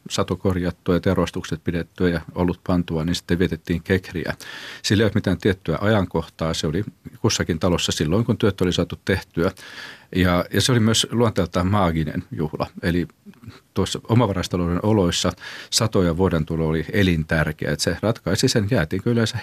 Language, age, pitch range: Finnish, 40-59, 80-95 Hz